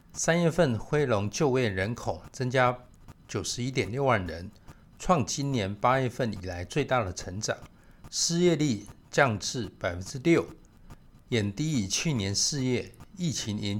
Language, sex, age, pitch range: Chinese, male, 60-79, 105-145 Hz